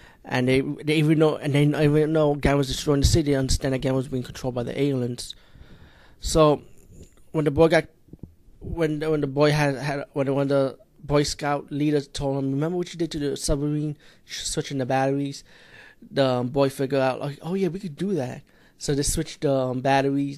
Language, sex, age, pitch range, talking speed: English, male, 20-39, 130-145 Hz, 205 wpm